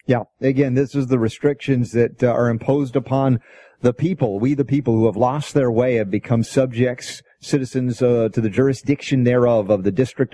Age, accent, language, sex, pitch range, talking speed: 40-59, American, English, male, 110-135 Hz, 190 wpm